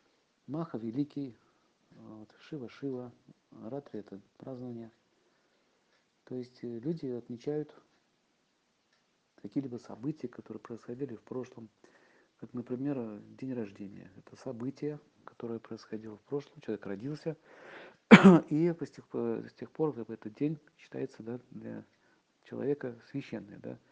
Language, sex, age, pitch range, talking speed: Russian, male, 50-69, 115-145 Hz, 95 wpm